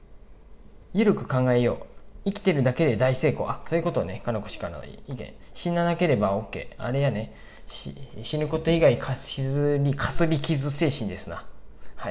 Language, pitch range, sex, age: Japanese, 120-160 Hz, male, 20-39